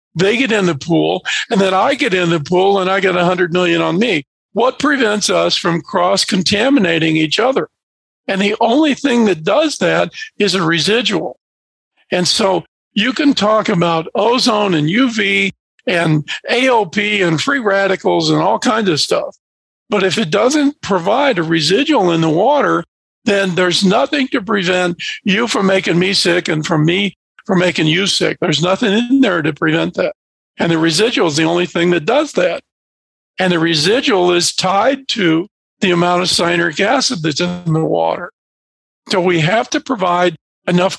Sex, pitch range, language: male, 165-210 Hz, English